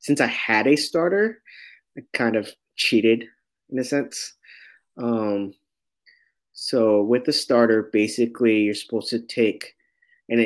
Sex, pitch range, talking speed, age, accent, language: male, 105-130 Hz, 130 wpm, 20-39, American, English